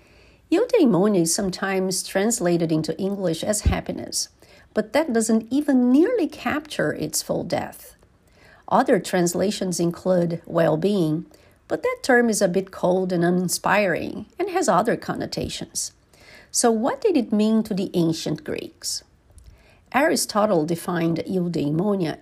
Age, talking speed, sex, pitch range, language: 50-69, 125 wpm, female, 170-225 Hz, English